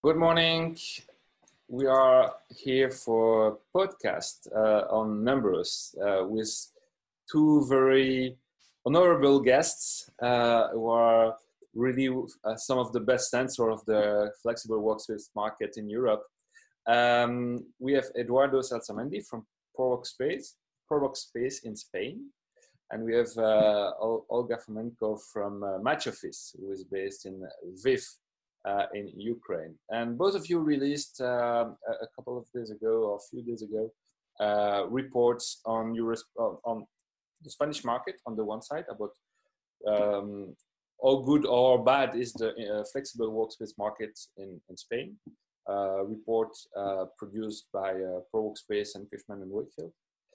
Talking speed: 140 wpm